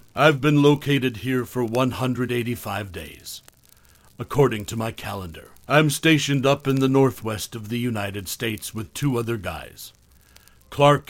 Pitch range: 110-140 Hz